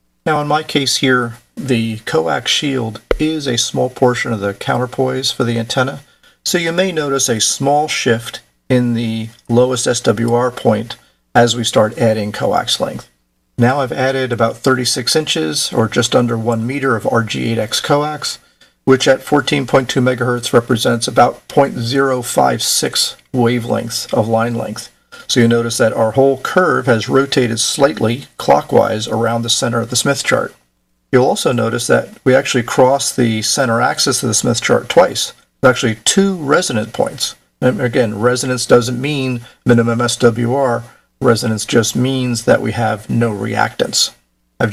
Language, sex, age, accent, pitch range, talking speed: English, male, 50-69, American, 115-130 Hz, 155 wpm